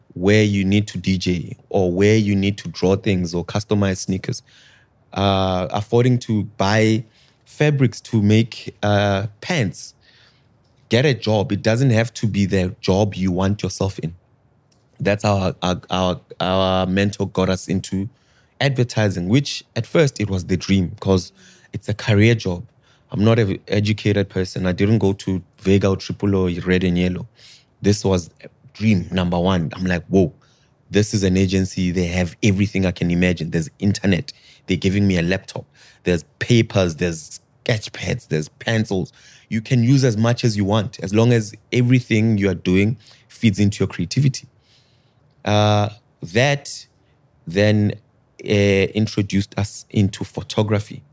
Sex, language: male, English